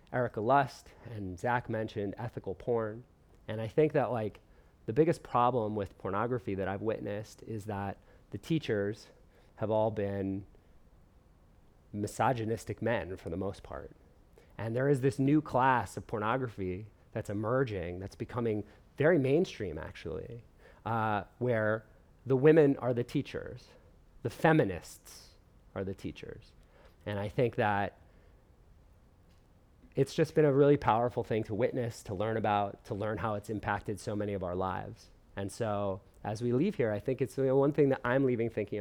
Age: 30-49